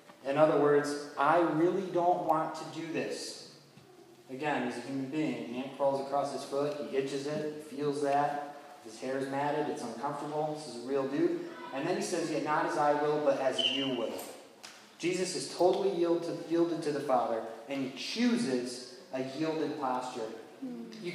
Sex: male